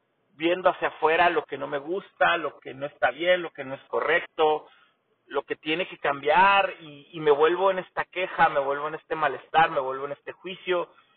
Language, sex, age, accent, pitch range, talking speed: Spanish, male, 40-59, Mexican, 145-195 Hz, 215 wpm